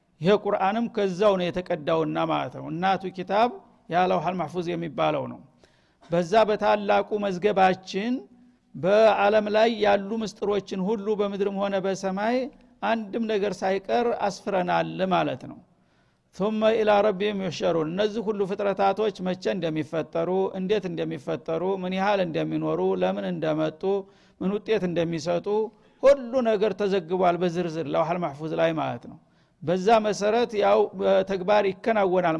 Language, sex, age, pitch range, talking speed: Amharic, male, 50-69, 175-210 Hz, 100 wpm